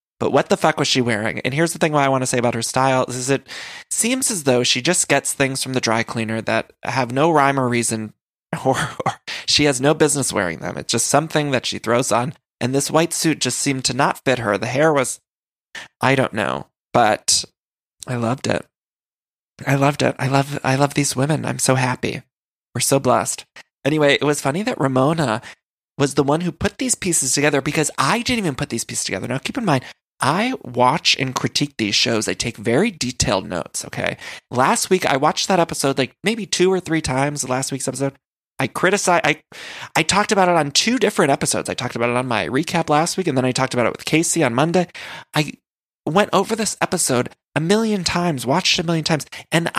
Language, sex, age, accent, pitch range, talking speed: English, male, 20-39, American, 125-165 Hz, 220 wpm